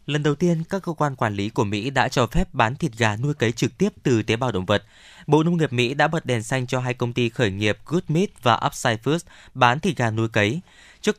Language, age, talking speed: Vietnamese, 20-39, 270 wpm